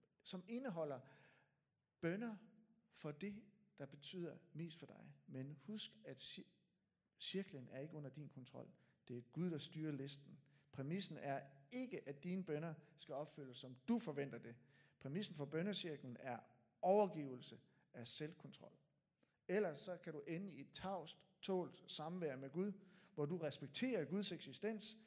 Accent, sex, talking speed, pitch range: native, male, 145 wpm, 135-195 Hz